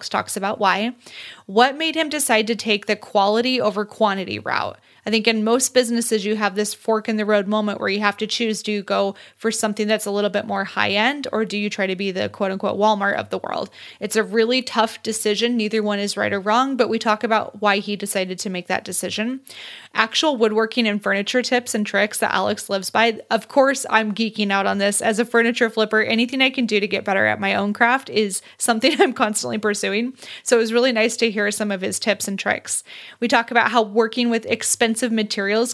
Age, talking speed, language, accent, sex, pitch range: 20-39, 230 wpm, English, American, female, 205-235 Hz